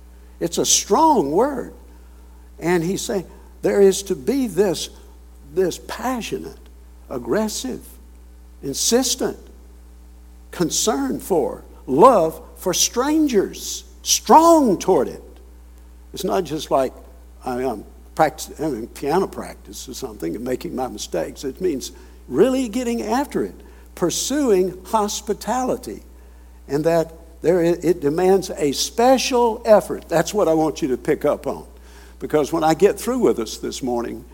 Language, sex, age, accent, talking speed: English, male, 60-79, American, 135 wpm